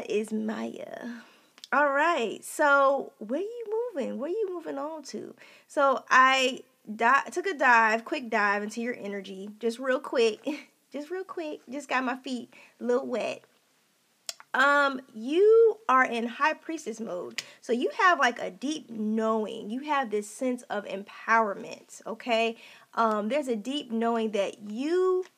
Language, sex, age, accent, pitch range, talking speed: English, female, 20-39, American, 230-305 Hz, 160 wpm